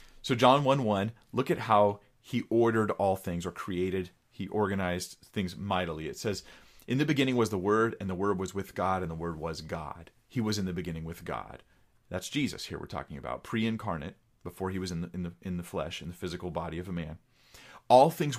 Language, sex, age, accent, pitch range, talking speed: English, male, 30-49, American, 90-115 Hz, 230 wpm